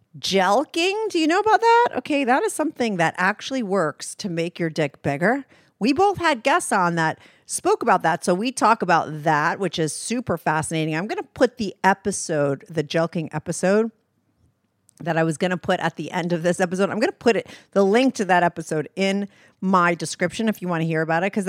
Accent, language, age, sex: American, English, 50-69, female